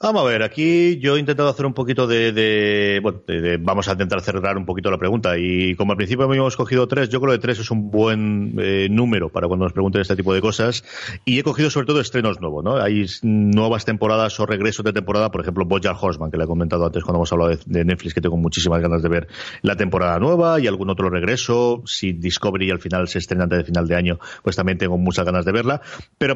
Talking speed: 245 wpm